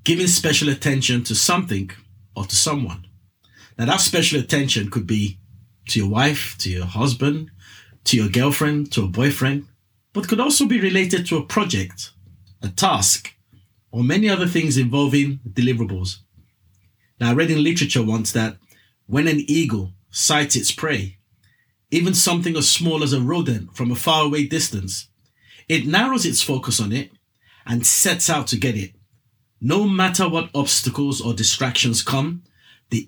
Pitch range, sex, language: 105-145 Hz, male, English